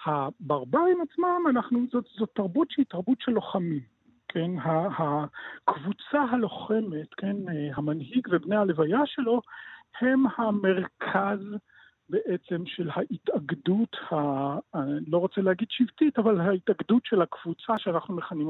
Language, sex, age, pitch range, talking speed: Hebrew, male, 50-69, 160-245 Hz, 105 wpm